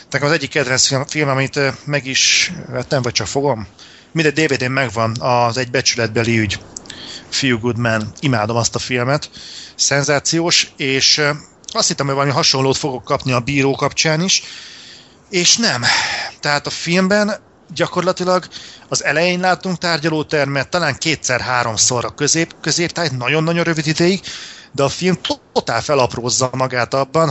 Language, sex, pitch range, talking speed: Hungarian, male, 125-155 Hz, 140 wpm